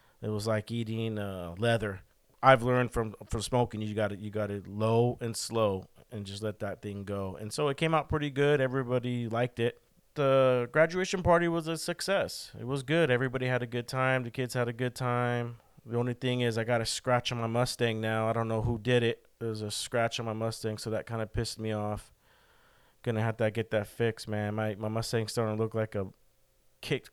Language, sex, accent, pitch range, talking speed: English, male, American, 110-135 Hz, 230 wpm